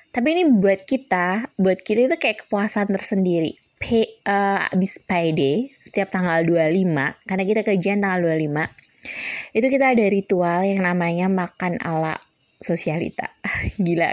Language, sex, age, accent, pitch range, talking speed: Indonesian, female, 20-39, native, 170-215 Hz, 140 wpm